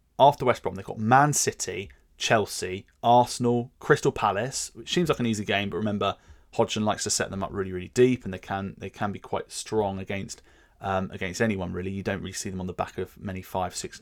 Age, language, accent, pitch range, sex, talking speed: 30-49, English, British, 100-120 Hz, male, 225 wpm